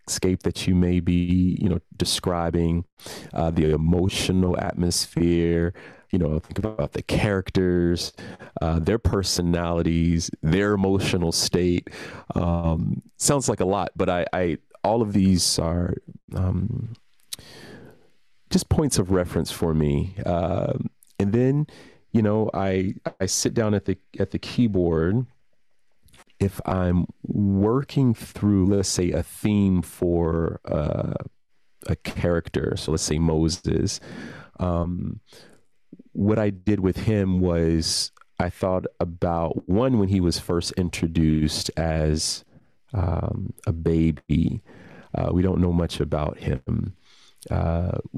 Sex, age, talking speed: male, 30-49, 125 wpm